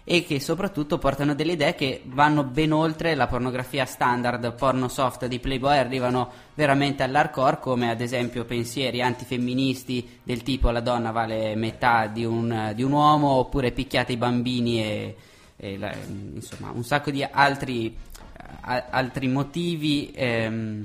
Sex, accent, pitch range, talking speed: male, native, 120-150 Hz, 150 wpm